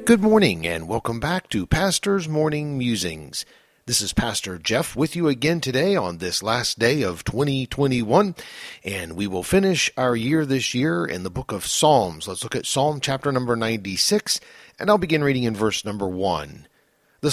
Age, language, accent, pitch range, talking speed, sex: 50-69, English, American, 110-160 Hz, 180 wpm, male